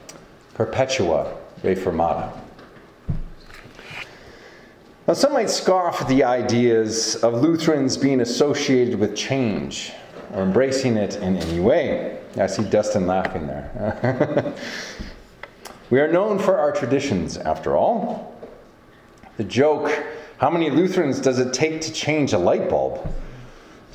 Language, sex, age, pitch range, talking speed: English, male, 40-59, 120-165 Hz, 125 wpm